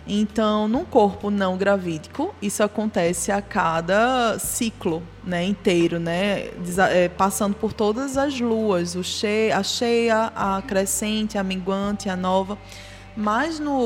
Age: 20-39